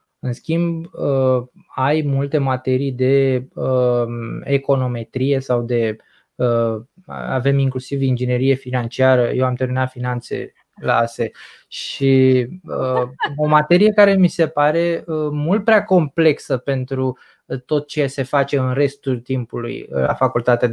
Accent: native